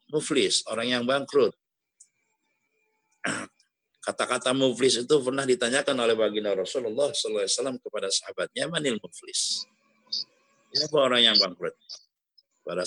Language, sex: Indonesian, male